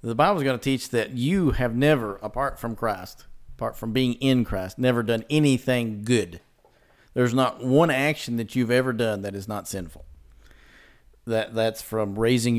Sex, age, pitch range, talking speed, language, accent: male, 50-69, 110-135 Hz, 180 wpm, English, American